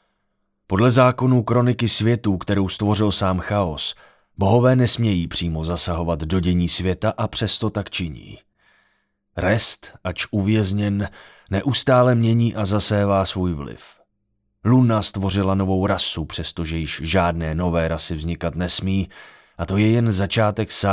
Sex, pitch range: male, 90-105 Hz